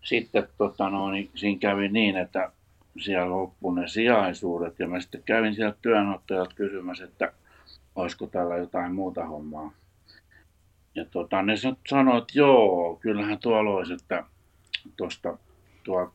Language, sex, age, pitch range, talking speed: Finnish, male, 60-79, 90-105 Hz, 140 wpm